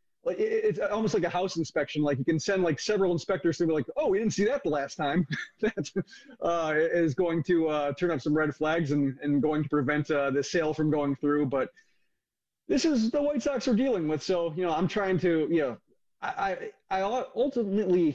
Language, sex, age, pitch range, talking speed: English, male, 30-49, 145-190 Hz, 220 wpm